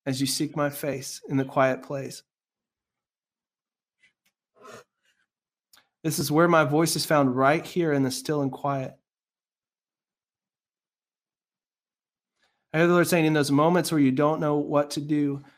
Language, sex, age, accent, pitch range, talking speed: English, male, 20-39, American, 145-165 Hz, 145 wpm